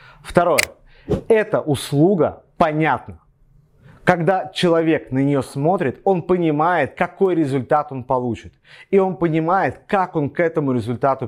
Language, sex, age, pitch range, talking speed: Russian, male, 30-49, 130-175 Hz, 120 wpm